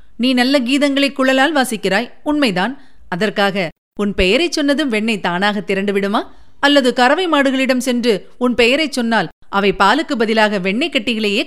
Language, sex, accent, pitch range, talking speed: Tamil, female, native, 200-275 Hz, 135 wpm